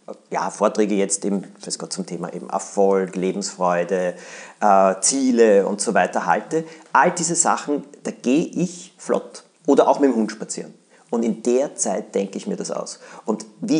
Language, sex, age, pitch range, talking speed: German, male, 40-59, 100-135 Hz, 175 wpm